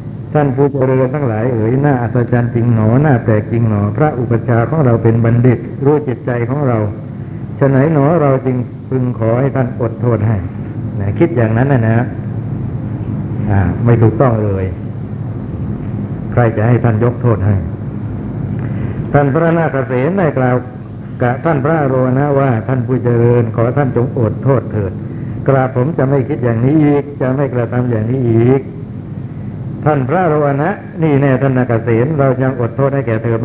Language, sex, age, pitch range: Thai, male, 60-79, 115-135 Hz